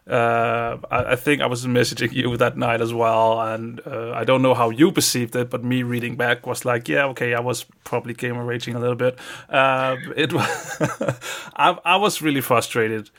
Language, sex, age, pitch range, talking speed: English, male, 30-49, 115-135 Hz, 205 wpm